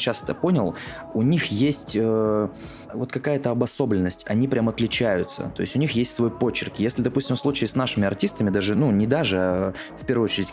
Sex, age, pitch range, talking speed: male, 20-39, 95-125 Hz, 195 wpm